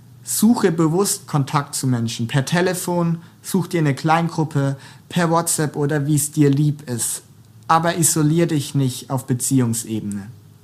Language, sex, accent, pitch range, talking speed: German, male, German, 130-165 Hz, 140 wpm